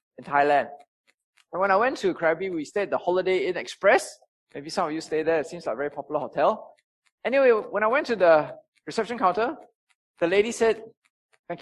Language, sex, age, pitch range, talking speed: English, male, 20-39, 165-255 Hz, 205 wpm